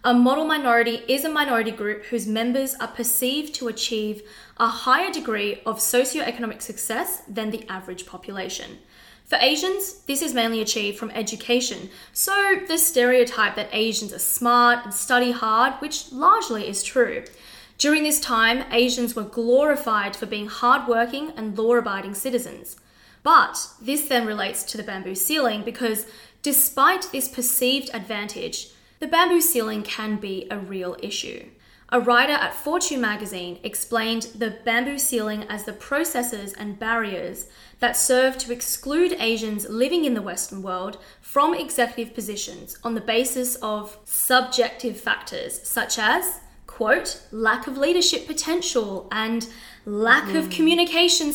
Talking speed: 145 wpm